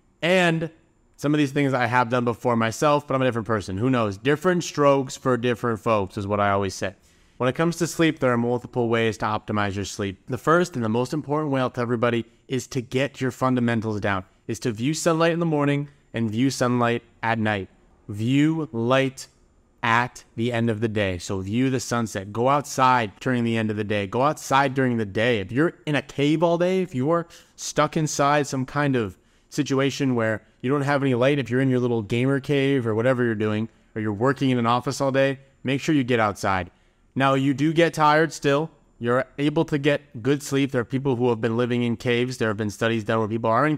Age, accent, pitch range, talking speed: 30-49, American, 115-140 Hz, 230 wpm